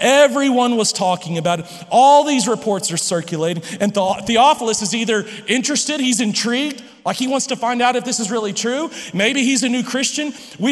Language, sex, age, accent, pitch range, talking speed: English, male, 40-59, American, 210-260 Hz, 190 wpm